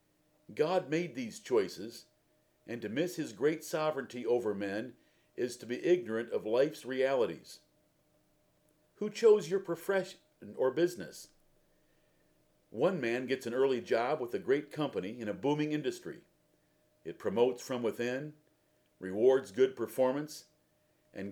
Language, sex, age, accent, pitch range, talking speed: English, male, 50-69, American, 125-180 Hz, 130 wpm